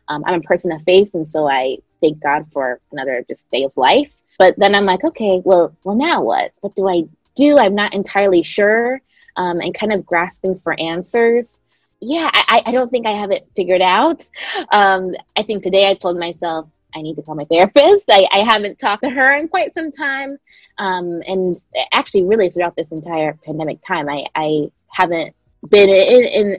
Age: 20-39